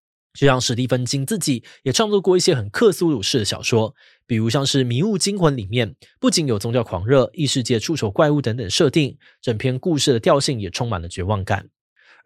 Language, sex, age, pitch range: Chinese, male, 20-39, 110-155 Hz